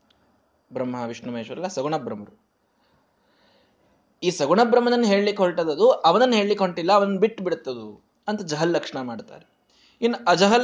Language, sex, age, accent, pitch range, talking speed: Kannada, male, 20-39, native, 150-225 Hz, 115 wpm